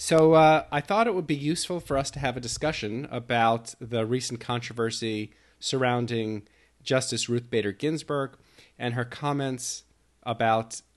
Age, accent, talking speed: 40-59, American, 150 wpm